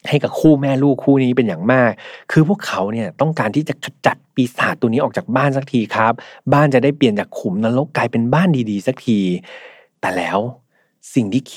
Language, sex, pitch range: Thai, male, 110-140 Hz